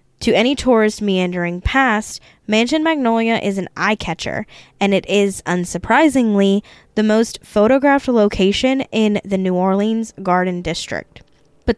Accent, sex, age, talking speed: American, female, 10-29, 125 wpm